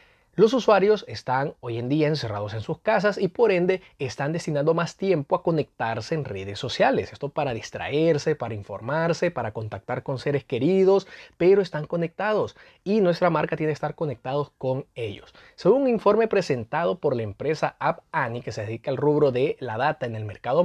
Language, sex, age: Spanish, male, 30-49